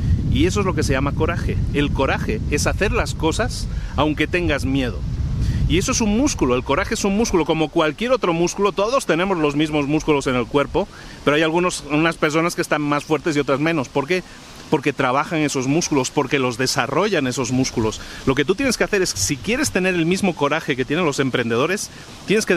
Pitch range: 140-180 Hz